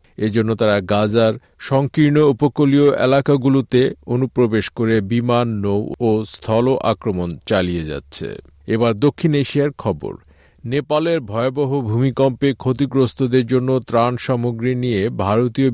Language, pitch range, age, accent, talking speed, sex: Bengali, 105-130 Hz, 50-69, native, 105 wpm, male